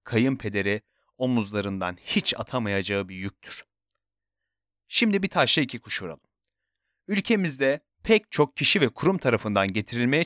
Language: Turkish